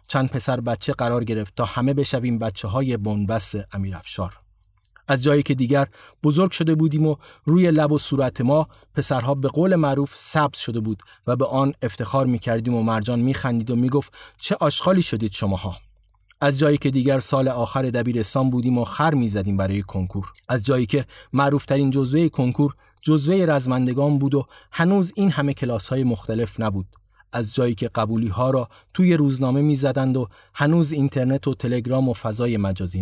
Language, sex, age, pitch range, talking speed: Persian, male, 30-49, 115-145 Hz, 170 wpm